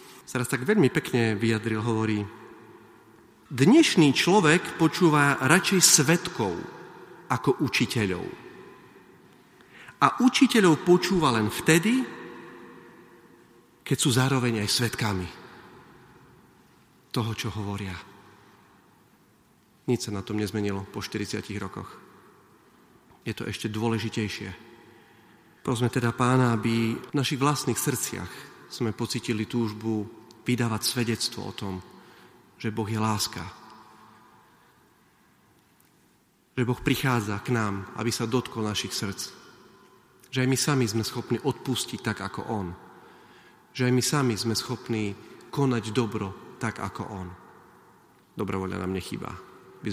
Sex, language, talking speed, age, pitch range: male, Slovak, 110 wpm, 40-59, 105-130 Hz